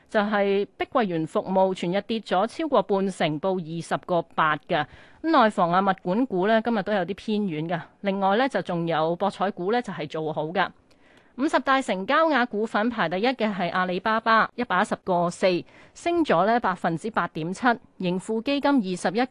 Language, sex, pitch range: Chinese, female, 180-245 Hz